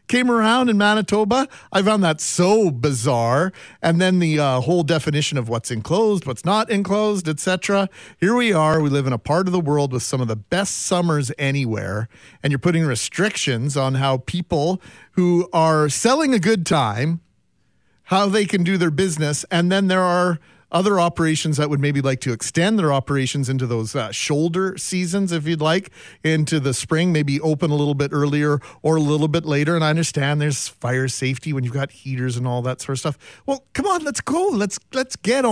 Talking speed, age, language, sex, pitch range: 200 wpm, 40-59, English, male, 140-185 Hz